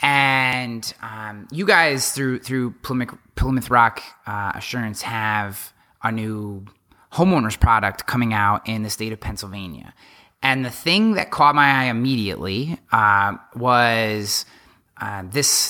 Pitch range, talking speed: 110-140 Hz, 135 wpm